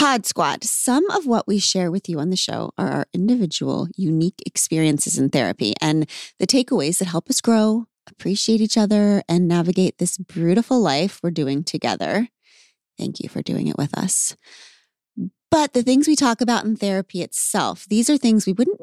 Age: 30-49